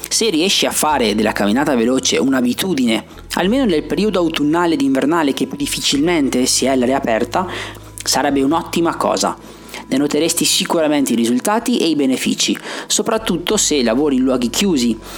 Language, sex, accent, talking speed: Italian, male, native, 150 wpm